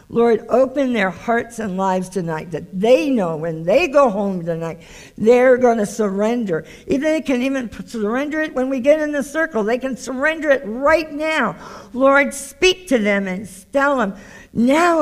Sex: female